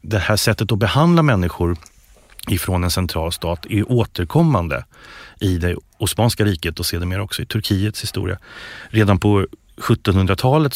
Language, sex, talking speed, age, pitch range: English, male, 150 wpm, 30-49, 90-115 Hz